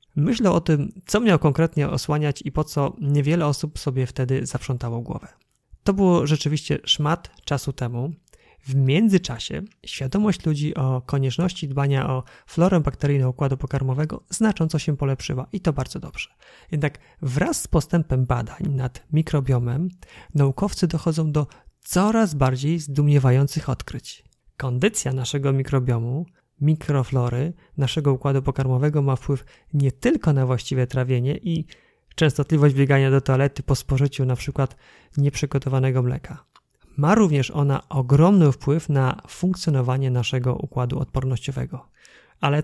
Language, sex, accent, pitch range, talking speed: Polish, male, native, 130-160 Hz, 125 wpm